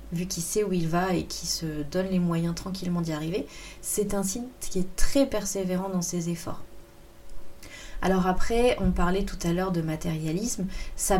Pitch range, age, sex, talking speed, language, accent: 170-205 Hz, 30-49, female, 190 wpm, French, French